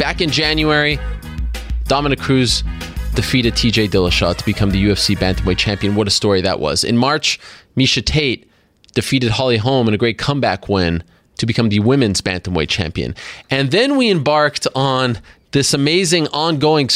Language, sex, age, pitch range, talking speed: English, male, 20-39, 105-140 Hz, 160 wpm